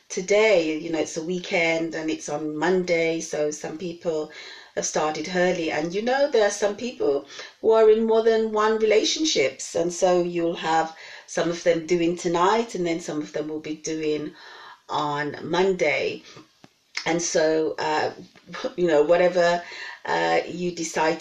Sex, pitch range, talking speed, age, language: female, 160-190 Hz, 165 wpm, 40-59, English